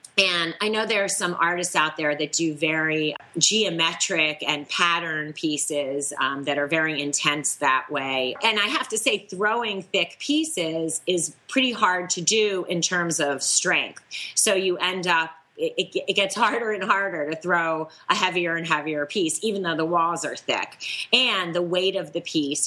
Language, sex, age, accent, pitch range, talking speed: English, female, 30-49, American, 155-185 Hz, 185 wpm